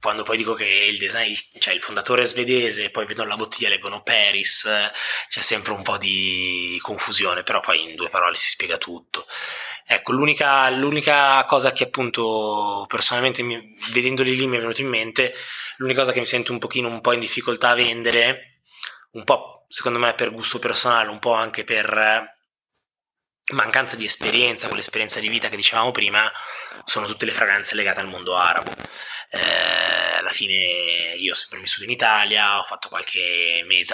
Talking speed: 180 wpm